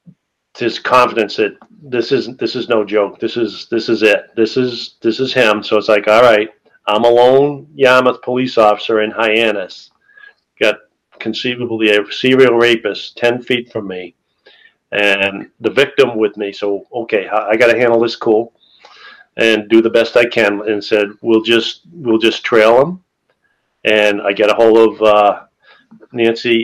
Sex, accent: male, American